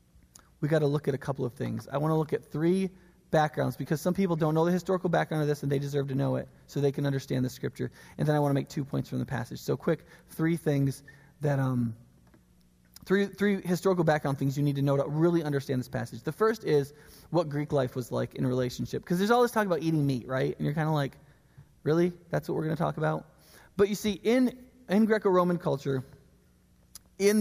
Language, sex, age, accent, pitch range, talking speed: English, male, 20-39, American, 140-190 Hz, 240 wpm